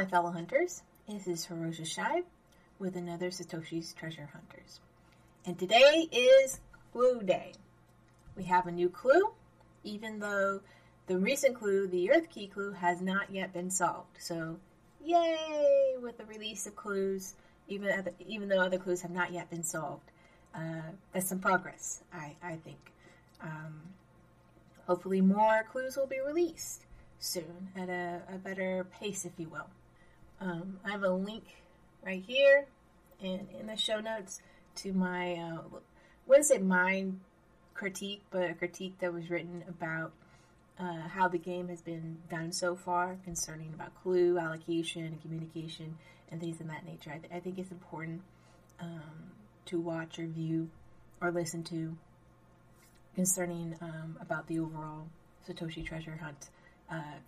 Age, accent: 30-49, American